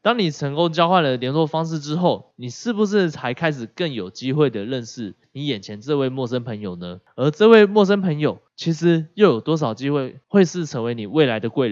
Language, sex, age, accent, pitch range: Chinese, male, 20-39, native, 115-165 Hz